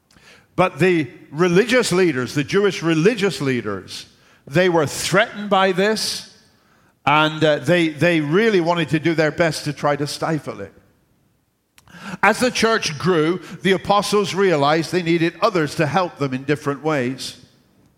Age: 50-69